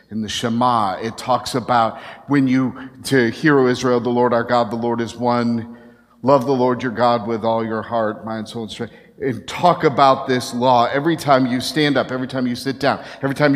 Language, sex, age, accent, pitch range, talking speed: English, male, 50-69, American, 110-135 Hz, 220 wpm